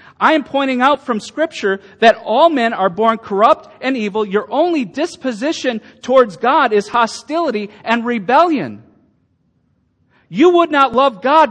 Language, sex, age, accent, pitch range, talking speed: English, male, 40-59, American, 200-280 Hz, 145 wpm